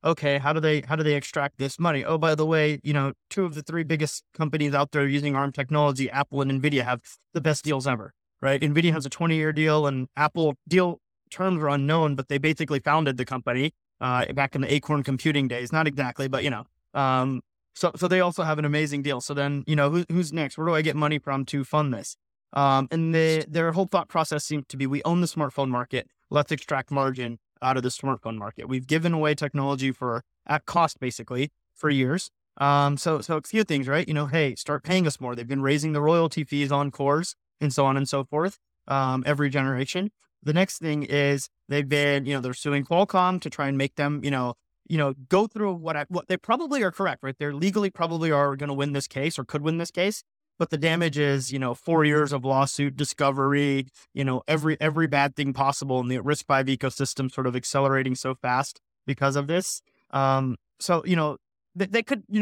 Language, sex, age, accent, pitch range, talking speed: English, male, 20-39, American, 135-160 Hz, 230 wpm